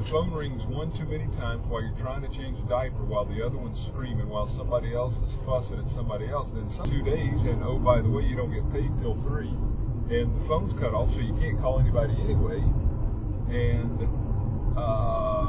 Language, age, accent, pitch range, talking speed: English, 50-69, American, 105-120 Hz, 210 wpm